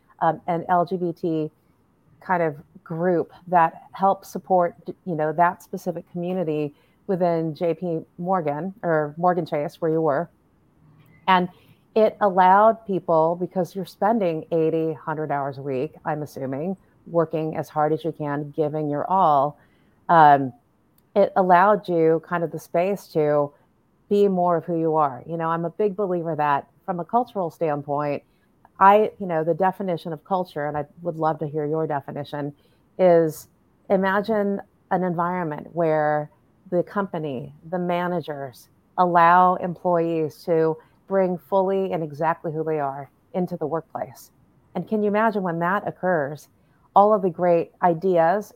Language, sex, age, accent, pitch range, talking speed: English, female, 30-49, American, 155-190 Hz, 150 wpm